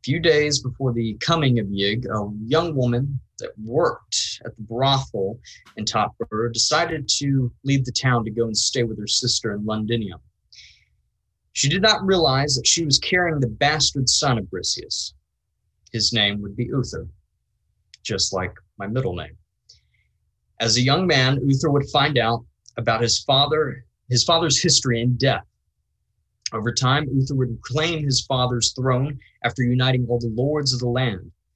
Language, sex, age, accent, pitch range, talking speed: English, male, 20-39, American, 105-135 Hz, 165 wpm